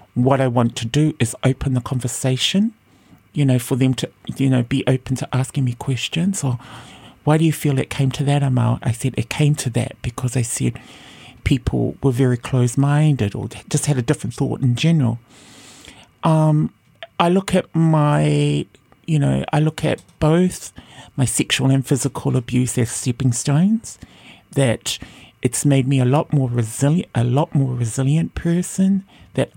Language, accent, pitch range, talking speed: English, British, 120-145 Hz, 175 wpm